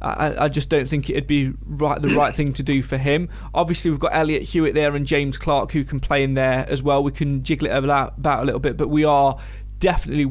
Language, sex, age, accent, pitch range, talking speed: English, male, 20-39, British, 135-155 Hz, 255 wpm